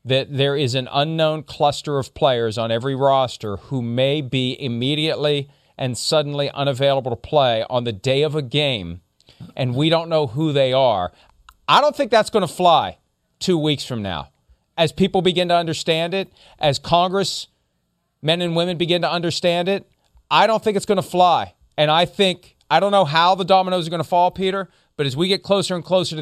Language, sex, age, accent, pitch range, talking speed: English, male, 40-59, American, 135-195 Hz, 200 wpm